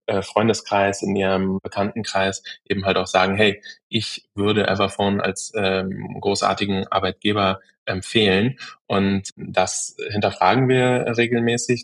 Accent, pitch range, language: German, 95-110 Hz, German